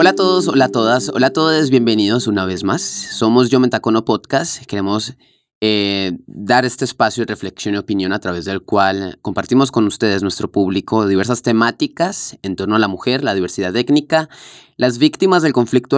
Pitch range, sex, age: 105-135 Hz, male, 20-39